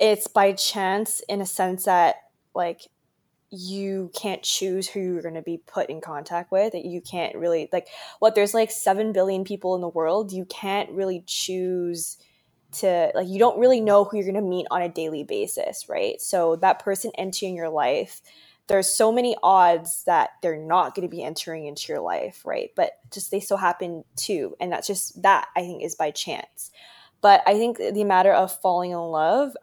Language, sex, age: English, female, 20-39